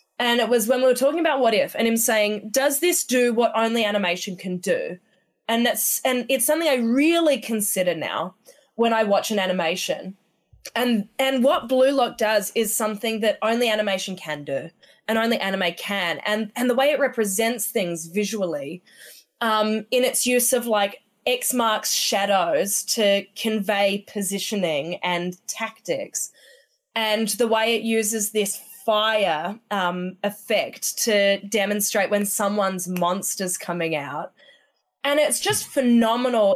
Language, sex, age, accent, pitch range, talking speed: English, female, 20-39, Australian, 205-250 Hz, 155 wpm